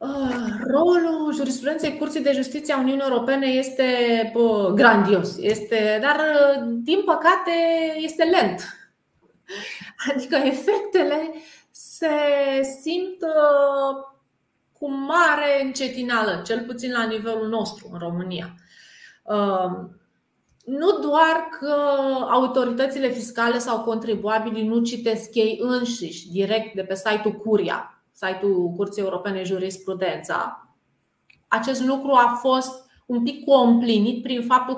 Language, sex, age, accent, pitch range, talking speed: Romanian, female, 30-49, native, 220-280 Hz, 100 wpm